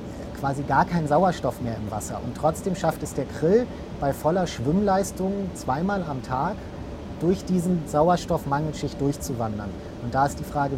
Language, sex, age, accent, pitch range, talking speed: German, male, 30-49, German, 135-175 Hz, 155 wpm